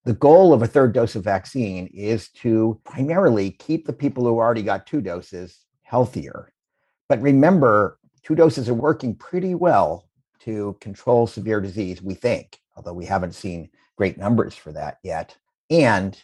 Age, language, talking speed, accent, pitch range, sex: 50-69, English, 165 wpm, American, 100-135 Hz, male